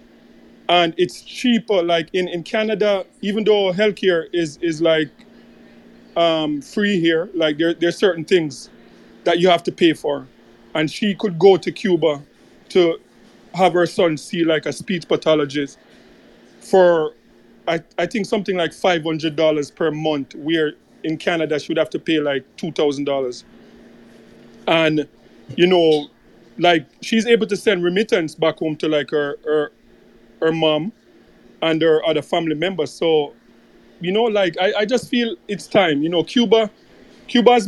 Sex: male